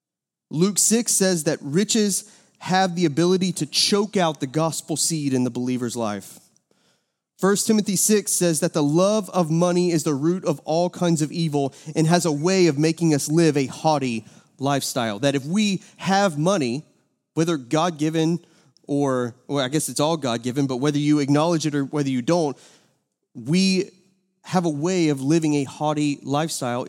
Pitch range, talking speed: 130-175 Hz, 175 wpm